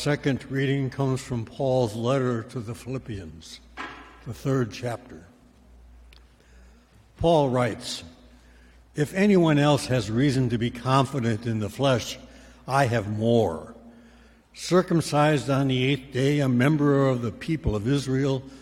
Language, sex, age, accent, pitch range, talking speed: English, male, 60-79, American, 110-145 Hz, 130 wpm